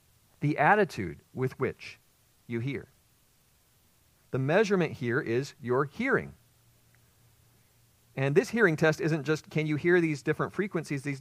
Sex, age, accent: male, 50-69, American